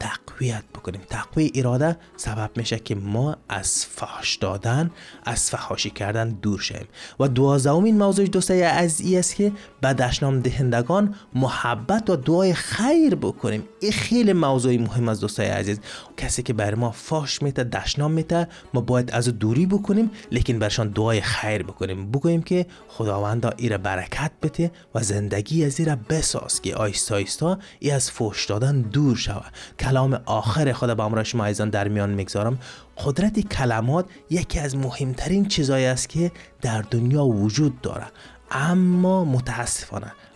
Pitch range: 115-170 Hz